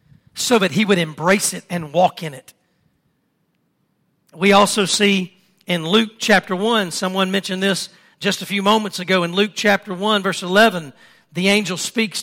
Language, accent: English, American